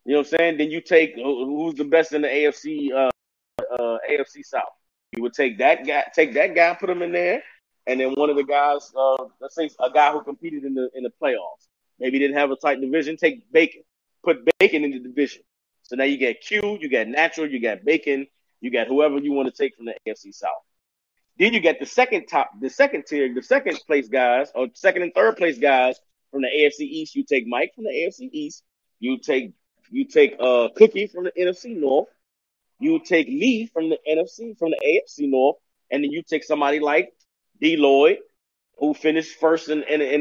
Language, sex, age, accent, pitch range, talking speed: English, male, 30-49, American, 145-220 Hz, 220 wpm